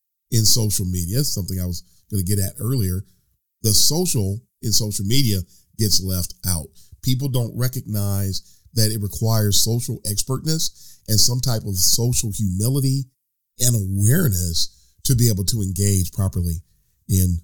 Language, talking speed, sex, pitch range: English, 145 wpm, male, 95-125 Hz